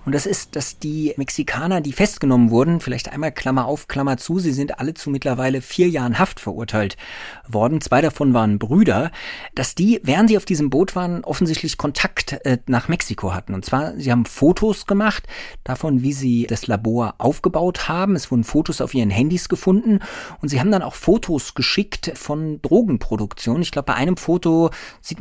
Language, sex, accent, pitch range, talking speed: German, male, German, 130-170 Hz, 185 wpm